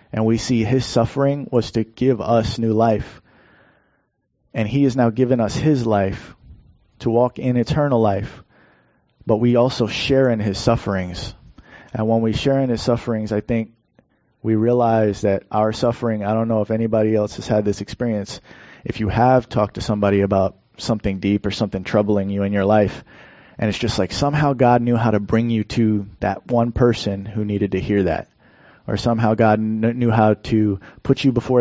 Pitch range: 105-120 Hz